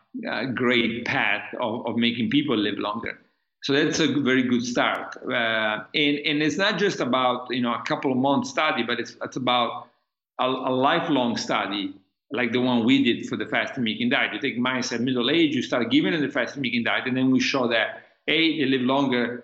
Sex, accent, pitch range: male, Italian, 120-150 Hz